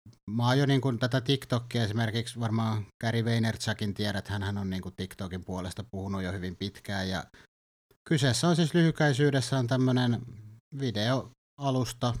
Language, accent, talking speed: Finnish, native, 150 wpm